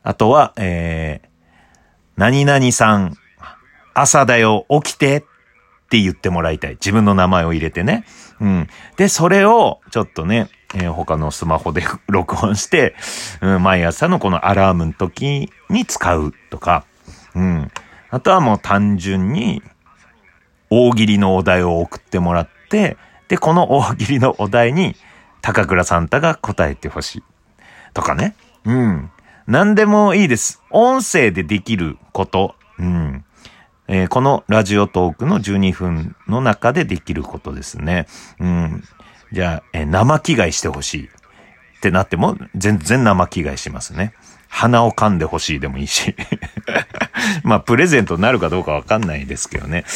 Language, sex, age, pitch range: Japanese, male, 40-59, 85-135 Hz